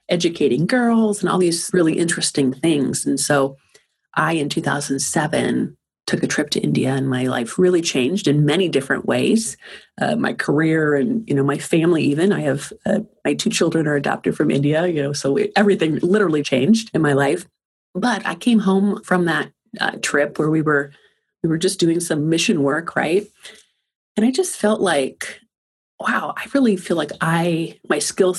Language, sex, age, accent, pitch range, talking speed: English, female, 30-49, American, 145-185 Hz, 180 wpm